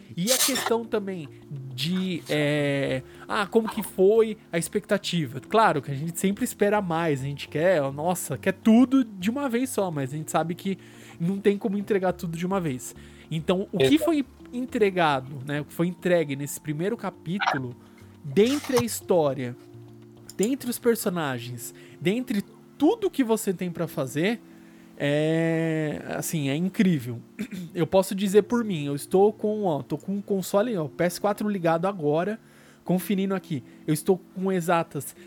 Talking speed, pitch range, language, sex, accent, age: 160 wpm, 150-205 Hz, Portuguese, male, Brazilian, 20-39